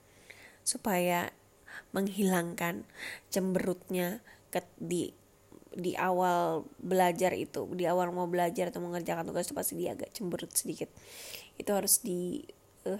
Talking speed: 120 wpm